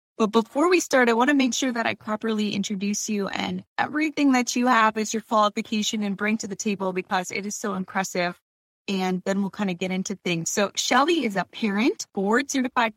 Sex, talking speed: female, 220 wpm